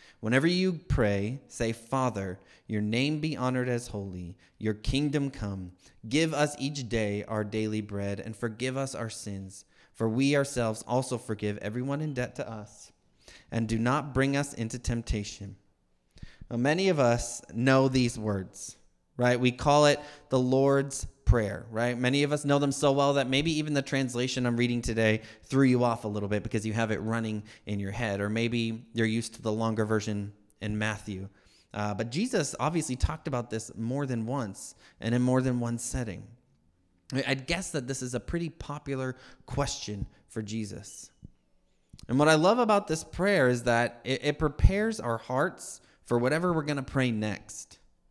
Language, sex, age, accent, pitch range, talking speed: English, male, 30-49, American, 105-135 Hz, 180 wpm